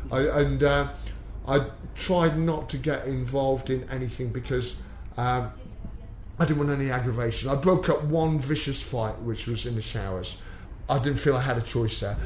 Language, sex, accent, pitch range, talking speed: English, male, British, 115-145 Hz, 175 wpm